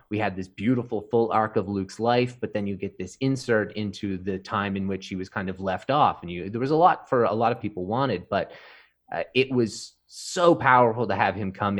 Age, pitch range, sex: 30-49, 95-115 Hz, male